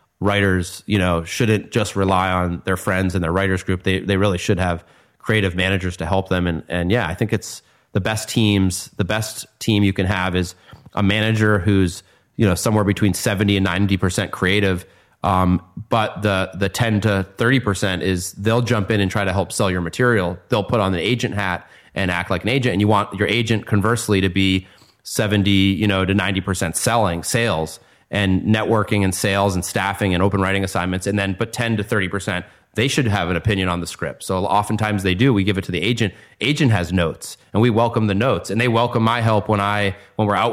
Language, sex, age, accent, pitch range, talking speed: English, male, 30-49, American, 95-110 Hz, 220 wpm